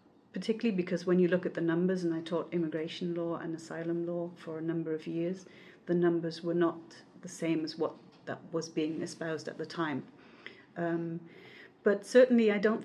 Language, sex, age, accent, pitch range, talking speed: English, female, 40-59, British, 165-185 Hz, 190 wpm